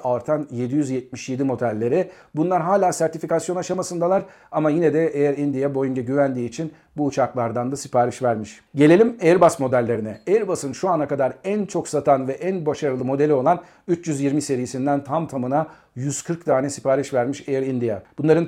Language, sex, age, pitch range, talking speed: Turkish, male, 50-69, 130-165 Hz, 150 wpm